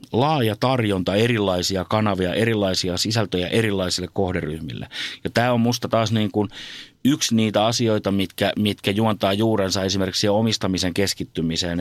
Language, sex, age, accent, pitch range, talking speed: Finnish, male, 30-49, native, 95-110 Hz, 125 wpm